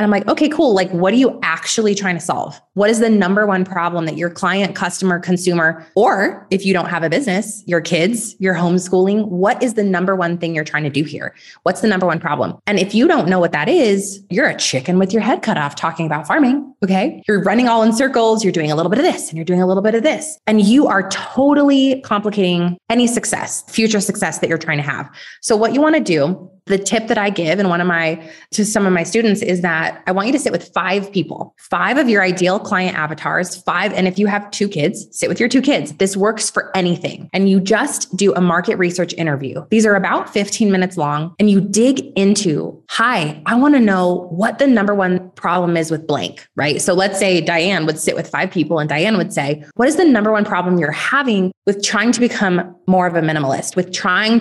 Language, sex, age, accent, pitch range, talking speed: English, female, 20-39, American, 170-215 Hz, 245 wpm